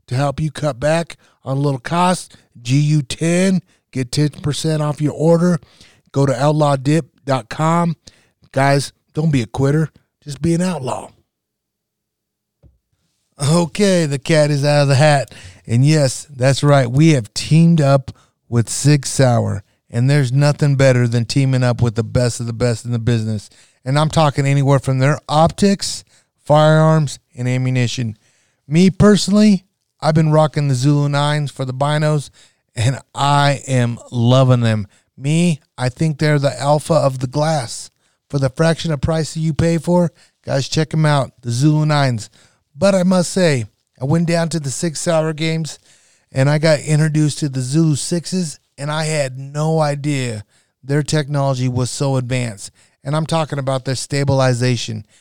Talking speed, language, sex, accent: 160 wpm, English, male, American